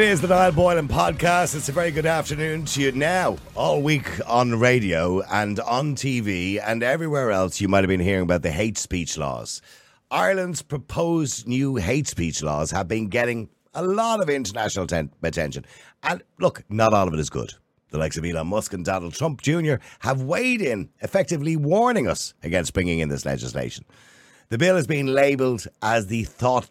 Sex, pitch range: male, 95-155 Hz